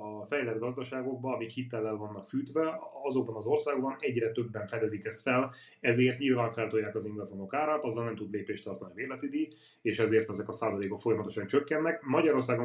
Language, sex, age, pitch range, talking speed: Hungarian, male, 30-49, 105-125 Hz, 175 wpm